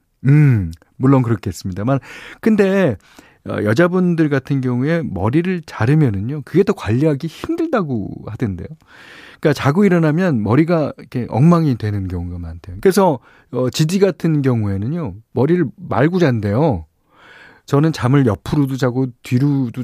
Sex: male